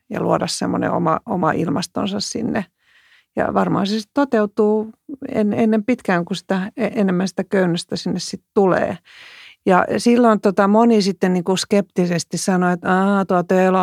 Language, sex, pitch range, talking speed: Finnish, female, 170-210 Hz, 145 wpm